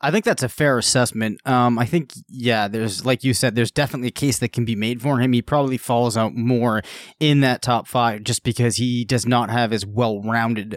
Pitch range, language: 115-140 Hz, English